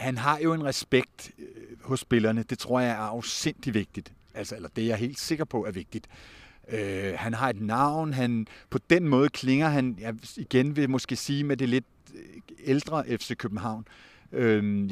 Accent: native